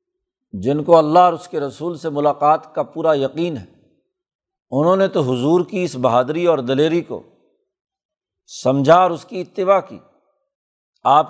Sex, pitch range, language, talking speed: male, 150-185 Hz, Urdu, 160 wpm